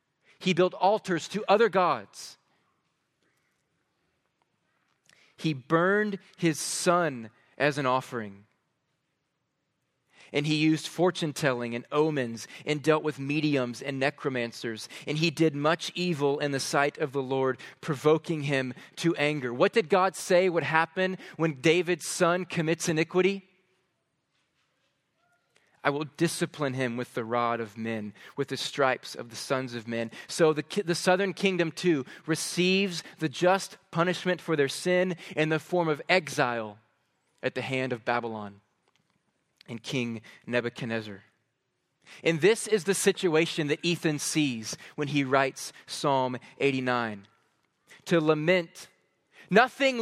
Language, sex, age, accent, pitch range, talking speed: English, male, 30-49, American, 130-180 Hz, 135 wpm